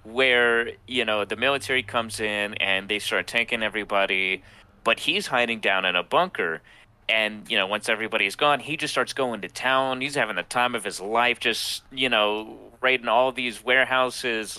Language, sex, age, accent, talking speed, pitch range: English, male, 30-49, American, 185 wpm, 100-125 Hz